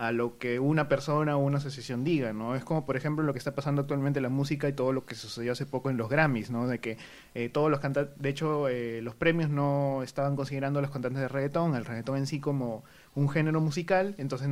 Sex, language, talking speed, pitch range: male, Spanish, 250 wpm, 130-155 Hz